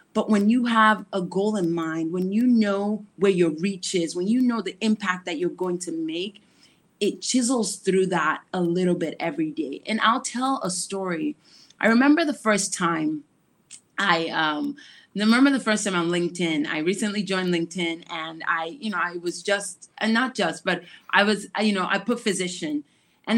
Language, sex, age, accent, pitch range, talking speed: English, female, 30-49, American, 180-230 Hz, 195 wpm